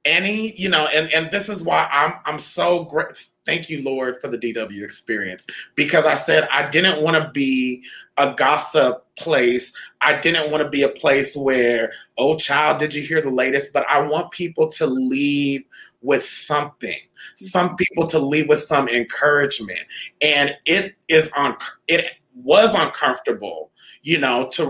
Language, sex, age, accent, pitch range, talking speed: English, male, 30-49, American, 135-165 Hz, 170 wpm